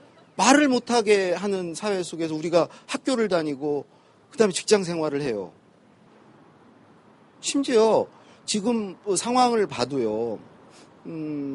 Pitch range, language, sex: 190-260 Hz, Korean, male